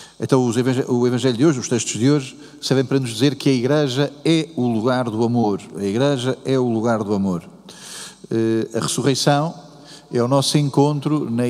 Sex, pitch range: male, 120-145 Hz